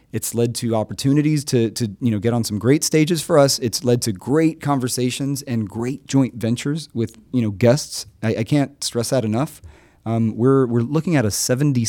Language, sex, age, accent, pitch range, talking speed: English, male, 30-49, American, 105-135 Hz, 205 wpm